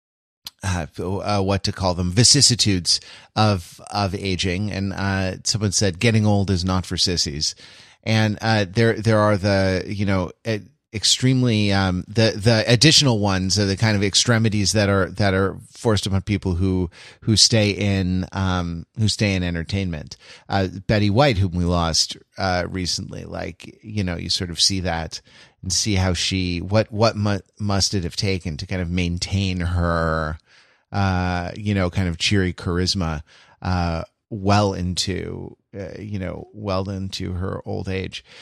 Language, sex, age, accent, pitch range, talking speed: English, male, 30-49, American, 95-115 Hz, 160 wpm